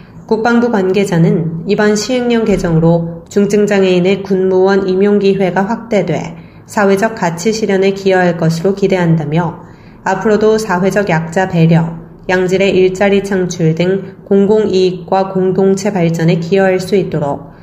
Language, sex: Korean, female